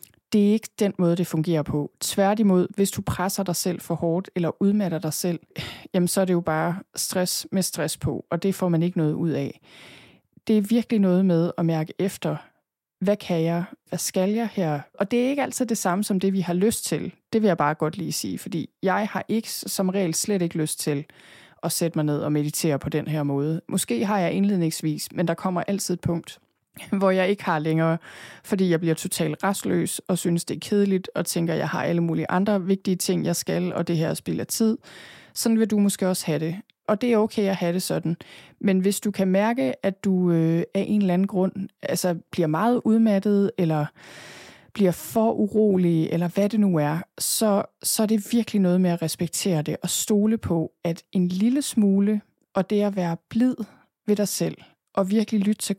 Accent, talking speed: native, 220 wpm